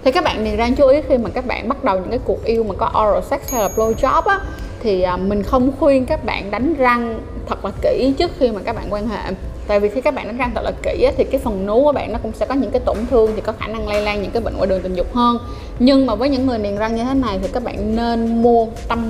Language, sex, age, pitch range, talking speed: Vietnamese, female, 10-29, 215-275 Hz, 310 wpm